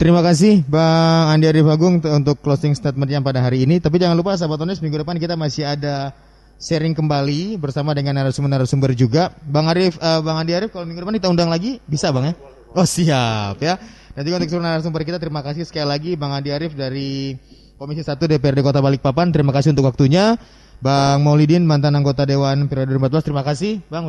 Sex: male